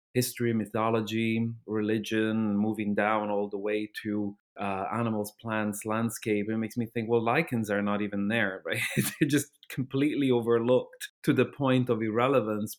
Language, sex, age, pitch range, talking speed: English, male, 30-49, 105-120 Hz, 155 wpm